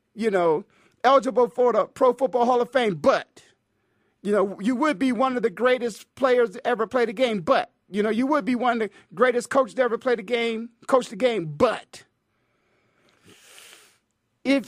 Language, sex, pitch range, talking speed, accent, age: English, male, 215-280 Hz, 190 wpm, American, 40-59